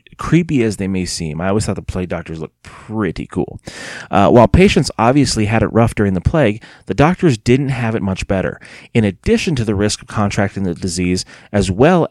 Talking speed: 210 wpm